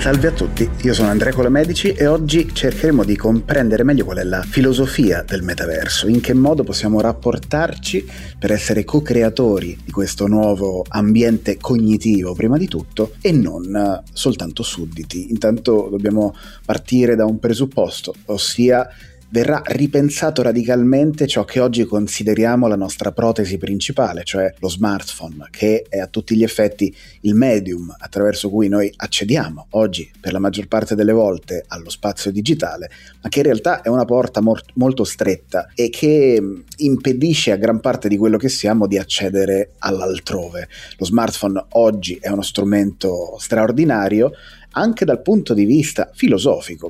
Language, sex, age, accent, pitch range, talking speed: Italian, male, 30-49, native, 100-120 Hz, 150 wpm